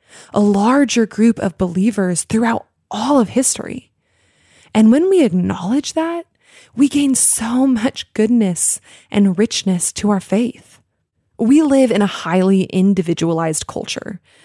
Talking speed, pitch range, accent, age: 130 wpm, 195-255 Hz, American, 20-39